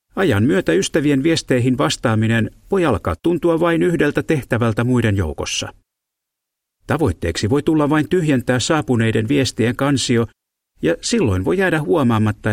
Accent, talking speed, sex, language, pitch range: native, 125 wpm, male, Finnish, 100-145 Hz